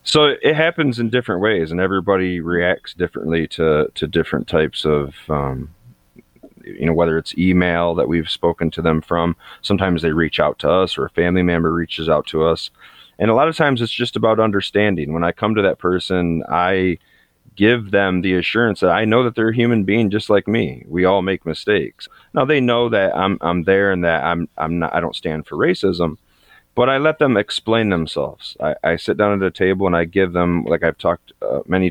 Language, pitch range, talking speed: English, 85-110 Hz, 215 wpm